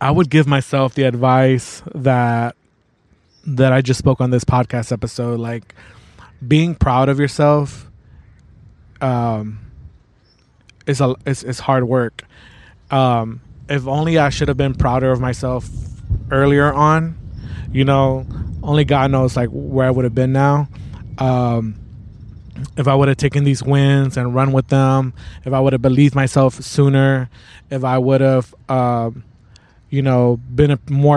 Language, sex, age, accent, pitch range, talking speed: English, male, 20-39, American, 120-140 Hz, 155 wpm